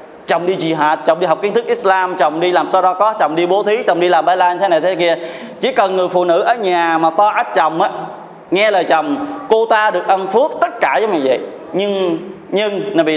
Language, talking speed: Vietnamese, 255 wpm